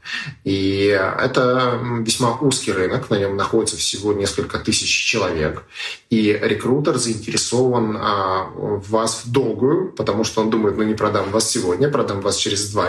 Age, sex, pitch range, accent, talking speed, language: 30-49, male, 95-125 Hz, native, 155 wpm, Russian